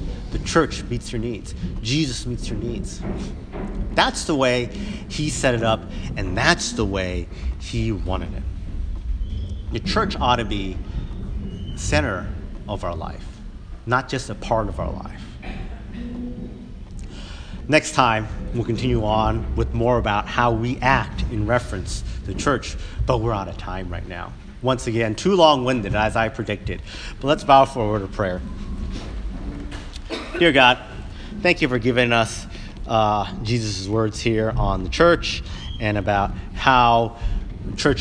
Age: 50-69